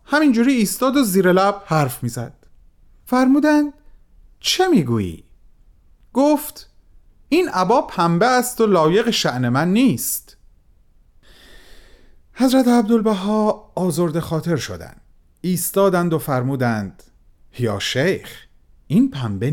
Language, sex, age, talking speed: Persian, male, 40-59, 100 wpm